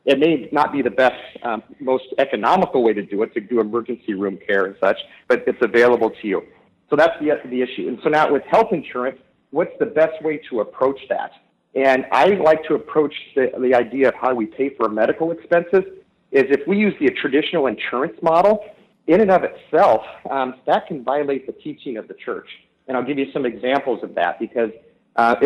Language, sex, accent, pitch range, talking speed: English, male, American, 125-165 Hz, 210 wpm